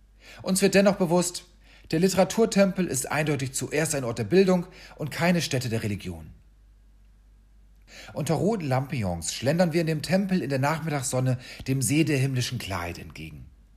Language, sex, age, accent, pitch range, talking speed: German, male, 40-59, German, 100-170 Hz, 155 wpm